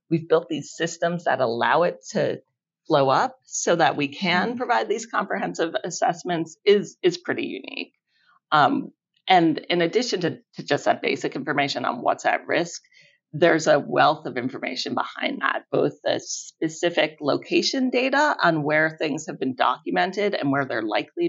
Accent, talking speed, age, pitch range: American, 165 wpm, 40-59, 145-205 Hz